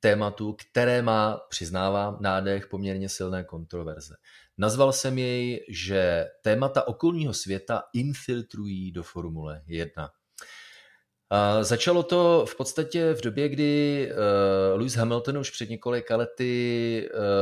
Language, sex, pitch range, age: Czech, male, 95-120 Hz, 30-49